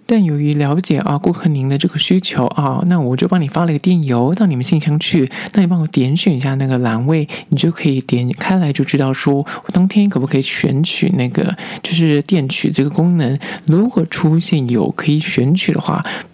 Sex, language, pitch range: male, Chinese, 140-185 Hz